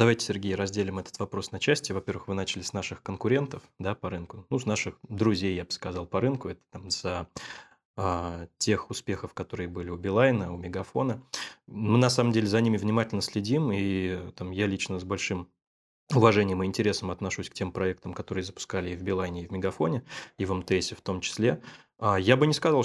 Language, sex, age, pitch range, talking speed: Russian, male, 20-39, 90-105 Hz, 200 wpm